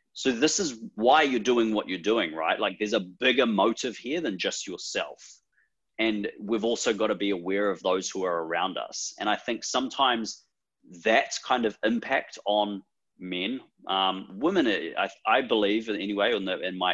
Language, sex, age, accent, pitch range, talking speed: English, male, 30-49, Australian, 95-155 Hz, 190 wpm